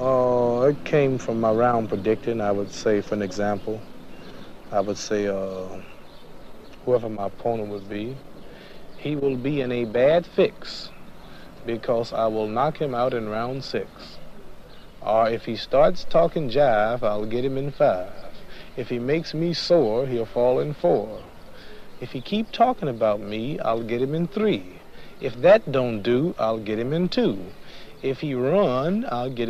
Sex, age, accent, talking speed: male, 50-69, American, 170 wpm